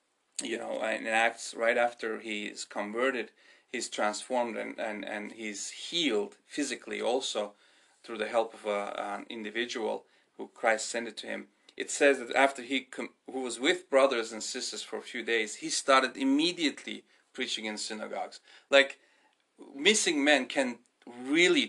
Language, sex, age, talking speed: English, male, 30-49, 160 wpm